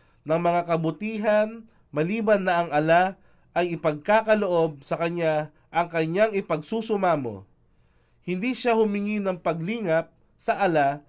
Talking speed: 115 wpm